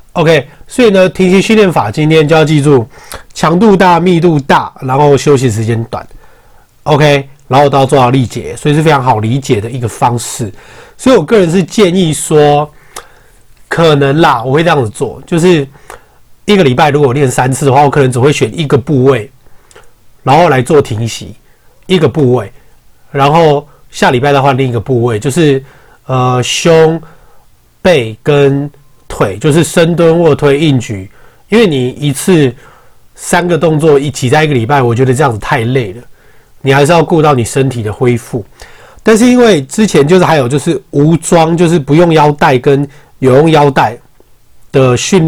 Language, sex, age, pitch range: Chinese, male, 30-49, 130-165 Hz